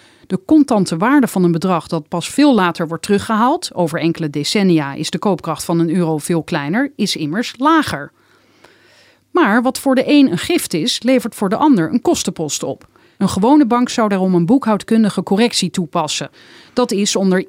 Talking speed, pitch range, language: 180 wpm, 180-250 Hz, Dutch